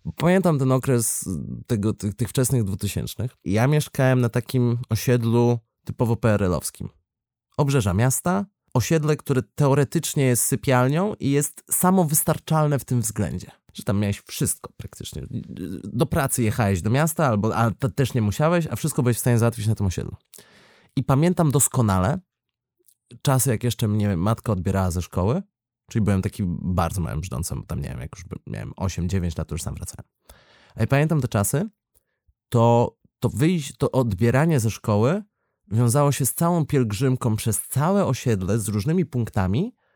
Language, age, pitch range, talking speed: Polish, 30-49, 105-145 Hz, 150 wpm